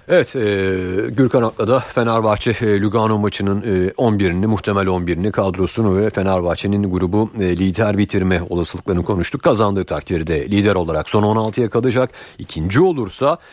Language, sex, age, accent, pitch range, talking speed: Turkish, male, 40-59, native, 100-125 Hz, 135 wpm